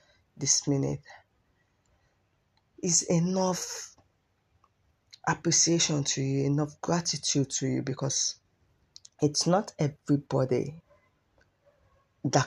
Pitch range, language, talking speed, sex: 110-160 Hz, English, 75 wpm, female